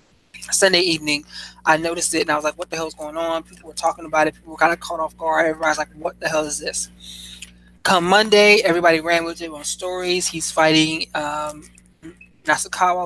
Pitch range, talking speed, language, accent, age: 150-170 Hz, 210 wpm, English, American, 20-39